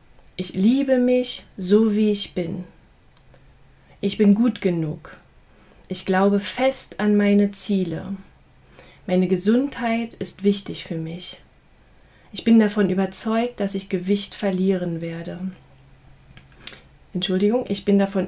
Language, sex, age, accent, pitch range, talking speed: German, female, 30-49, German, 185-215 Hz, 120 wpm